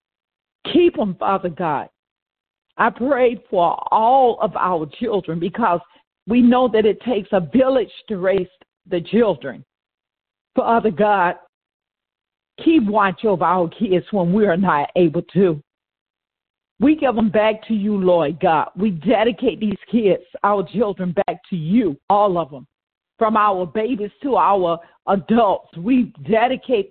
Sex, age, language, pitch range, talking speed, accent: female, 50-69, English, 180-225 Hz, 145 wpm, American